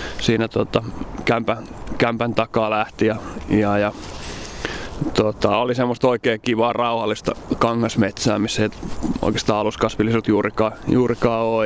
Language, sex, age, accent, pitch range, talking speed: Finnish, male, 20-39, native, 105-120 Hz, 120 wpm